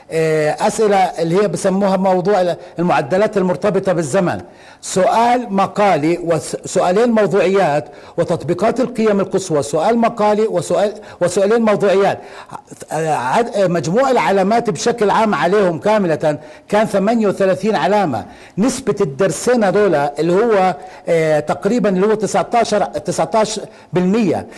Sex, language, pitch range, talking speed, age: male, Arabic, 175-215 Hz, 95 wpm, 60-79